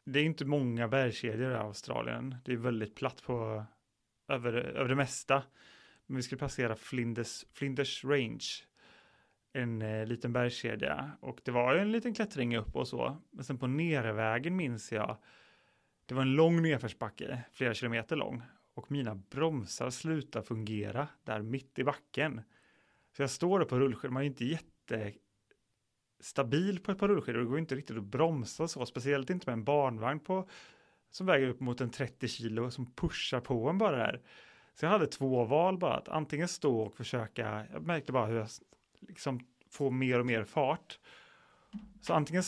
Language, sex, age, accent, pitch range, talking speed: Swedish, male, 30-49, native, 115-145 Hz, 180 wpm